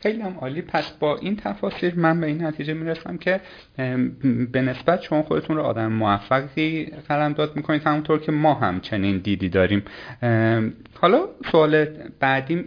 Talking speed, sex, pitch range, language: 145 wpm, male, 115-160 Hz, Persian